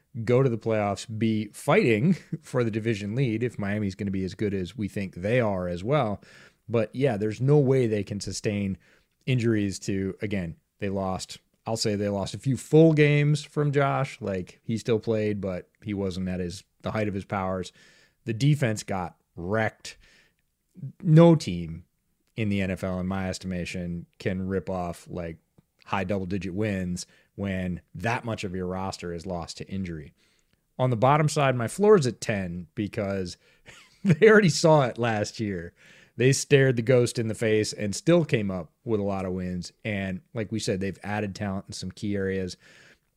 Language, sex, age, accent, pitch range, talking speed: English, male, 30-49, American, 95-120 Hz, 185 wpm